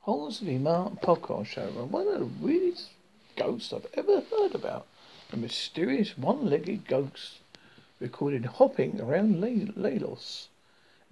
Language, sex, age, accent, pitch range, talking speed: English, male, 50-69, British, 135-205 Hz, 125 wpm